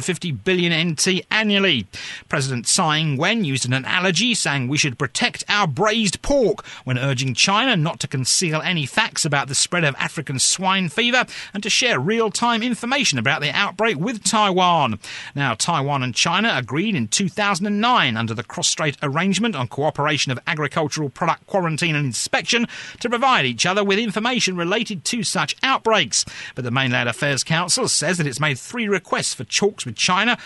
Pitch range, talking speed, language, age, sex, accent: 140-210 Hz, 170 wpm, English, 40-59, male, British